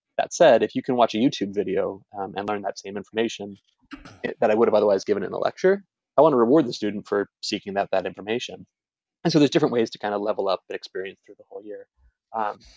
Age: 20-39